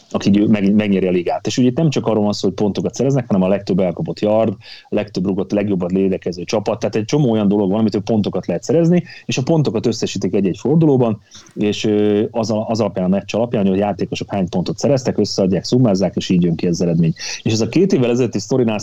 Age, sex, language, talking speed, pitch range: 30-49, male, Hungarian, 215 wpm, 100-130 Hz